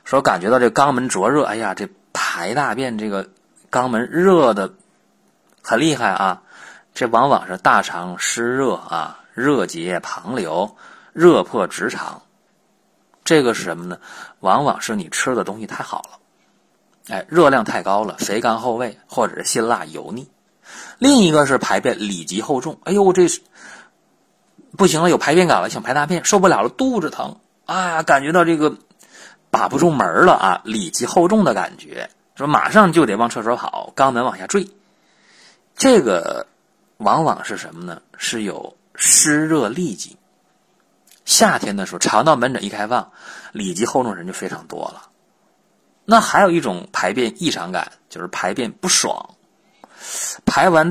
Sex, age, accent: male, 30-49, native